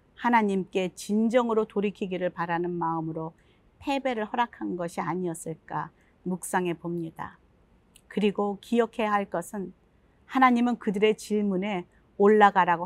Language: Korean